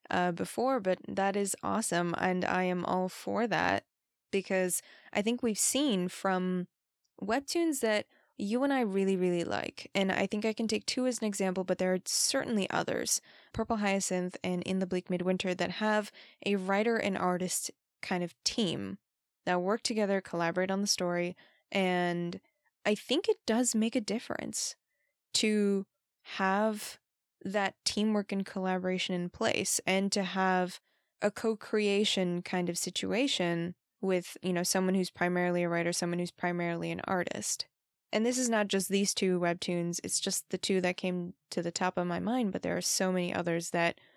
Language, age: English, 20-39